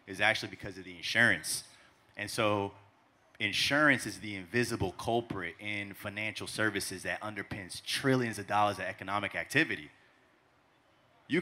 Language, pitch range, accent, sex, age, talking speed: English, 100-135 Hz, American, male, 30-49, 130 wpm